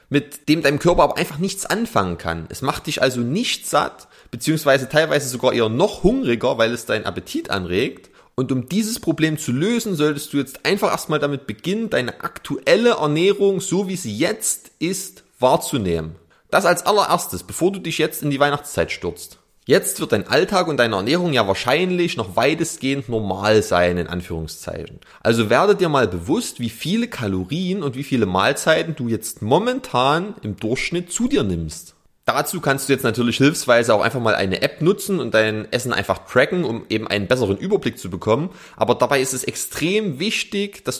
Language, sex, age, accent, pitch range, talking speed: German, male, 30-49, German, 120-170 Hz, 185 wpm